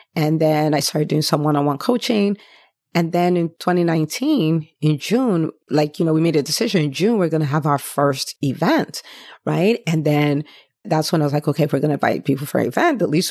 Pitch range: 150-180 Hz